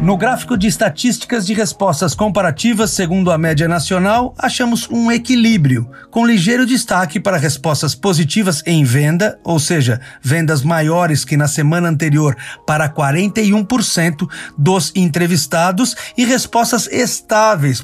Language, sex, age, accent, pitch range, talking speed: Portuguese, male, 50-69, Brazilian, 155-220 Hz, 125 wpm